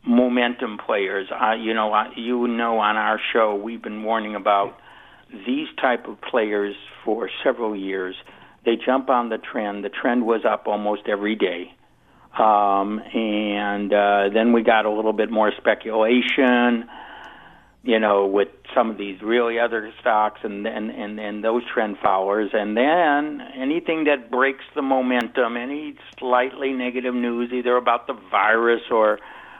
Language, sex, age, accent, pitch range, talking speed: English, male, 60-79, American, 105-120 Hz, 155 wpm